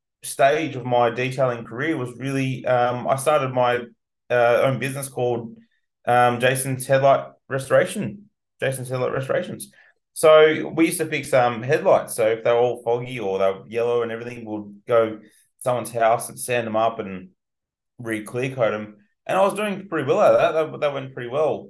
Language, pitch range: English, 115-135 Hz